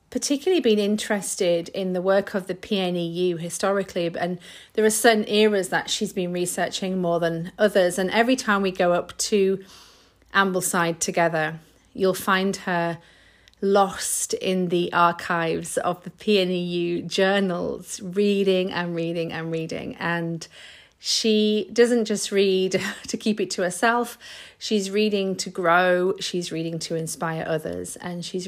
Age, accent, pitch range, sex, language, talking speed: 40-59, British, 170-205 Hz, female, English, 145 wpm